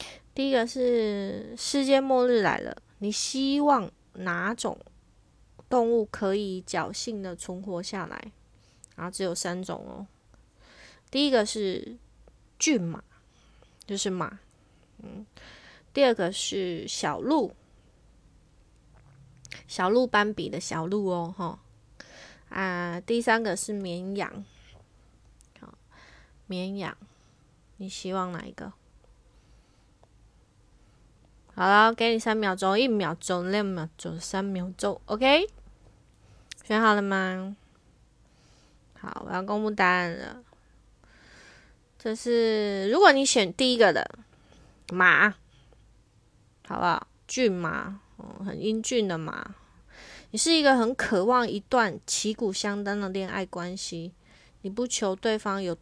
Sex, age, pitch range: female, 20-39, 175-220 Hz